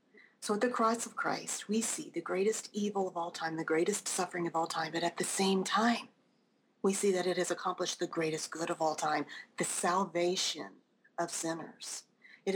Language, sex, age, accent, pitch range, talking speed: English, female, 40-59, American, 185-235 Hz, 200 wpm